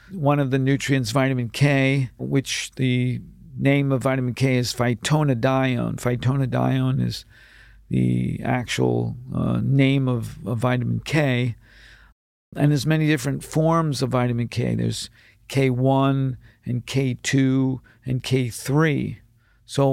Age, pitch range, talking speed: 50-69, 120-145 Hz, 115 wpm